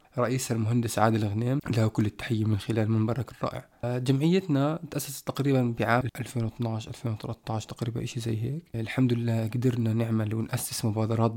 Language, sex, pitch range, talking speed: Arabic, male, 115-130 Hz, 135 wpm